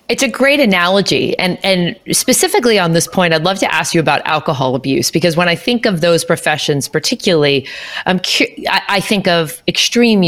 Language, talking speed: English, 185 wpm